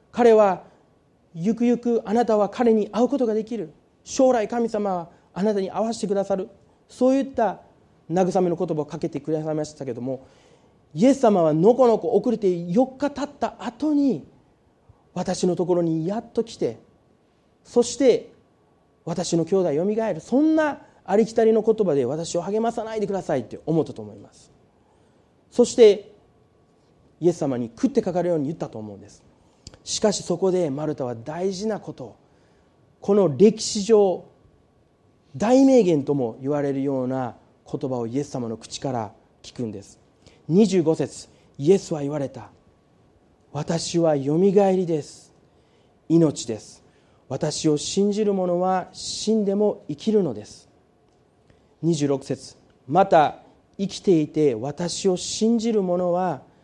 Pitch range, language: 145-220 Hz, Japanese